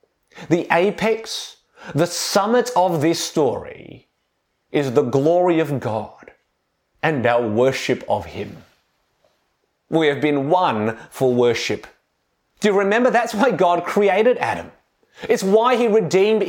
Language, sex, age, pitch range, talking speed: English, male, 30-49, 130-190 Hz, 125 wpm